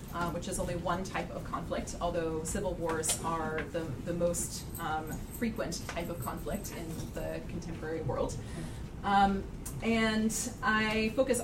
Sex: female